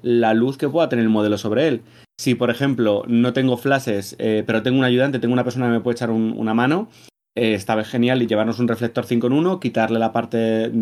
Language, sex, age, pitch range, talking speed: Spanish, male, 30-49, 110-130 Hz, 240 wpm